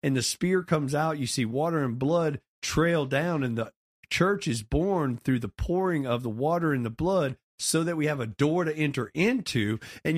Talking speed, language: 210 wpm, English